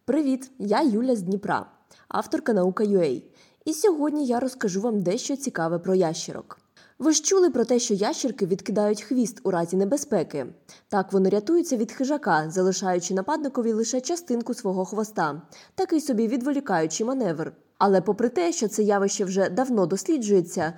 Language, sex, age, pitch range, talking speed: Ukrainian, female, 20-39, 185-275 Hz, 155 wpm